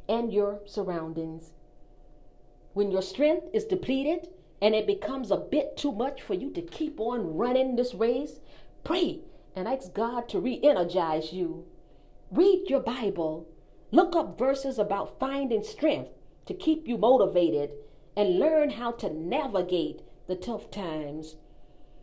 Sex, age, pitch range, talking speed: female, 40-59, 175-270 Hz, 140 wpm